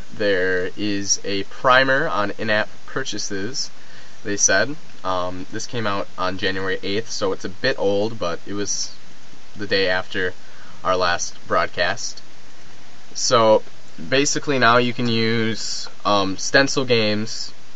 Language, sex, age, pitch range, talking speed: English, male, 20-39, 95-115 Hz, 130 wpm